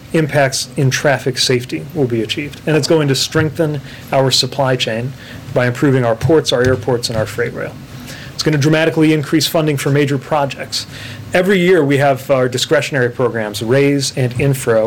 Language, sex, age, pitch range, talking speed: English, male, 30-49, 125-145 Hz, 180 wpm